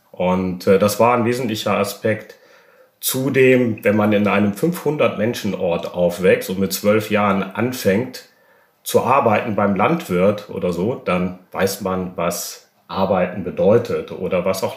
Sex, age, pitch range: male, 40-59, 95-120 Hz